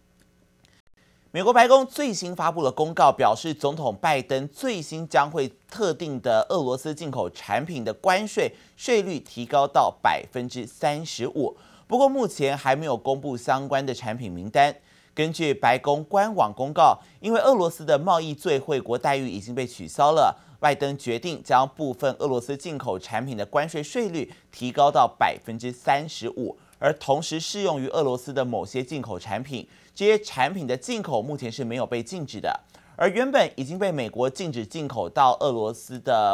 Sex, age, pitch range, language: male, 30-49, 120-160 Hz, Chinese